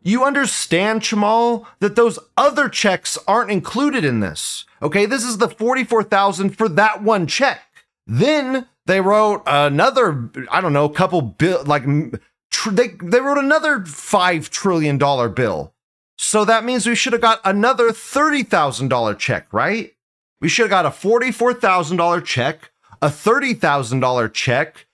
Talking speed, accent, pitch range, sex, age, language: 145 wpm, American, 160-230 Hz, male, 30-49, English